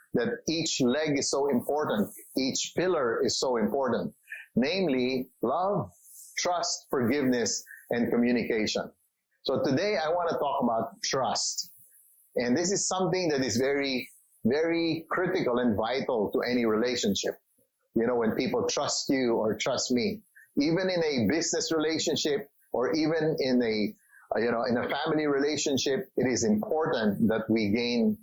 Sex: male